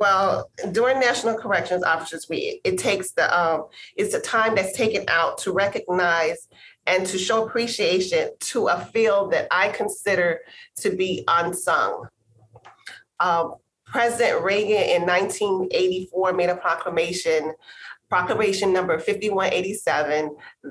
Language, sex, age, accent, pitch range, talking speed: English, female, 30-49, American, 185-270 Hz, 120 wpm